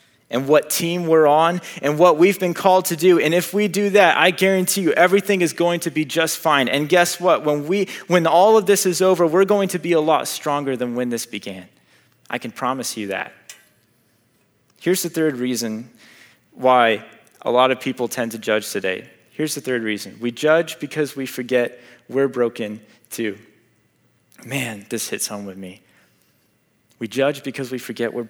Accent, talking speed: American, 195 wpm